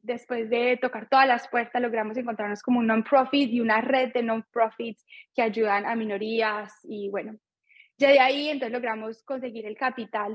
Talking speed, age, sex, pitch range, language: 175 wpm, 10-29, female, 220-255 Hz, Spanish